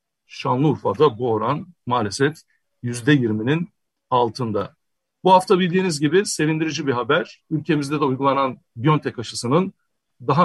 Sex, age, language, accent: male, 60-79, Turkish, native